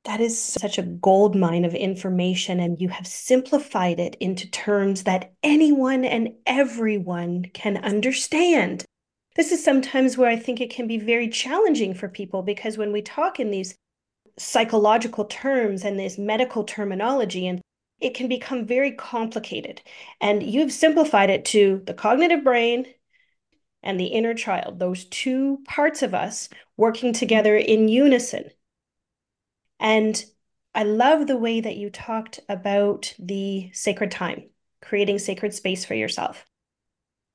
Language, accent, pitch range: English, American, 195-245 Hz